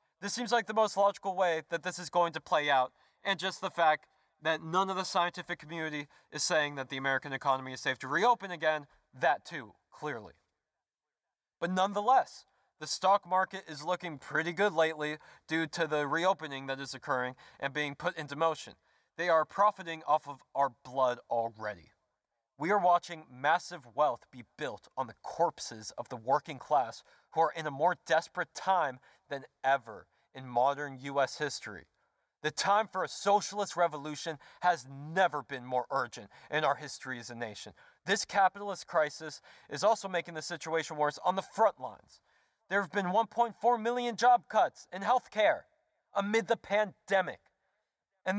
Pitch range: 145-195 Hz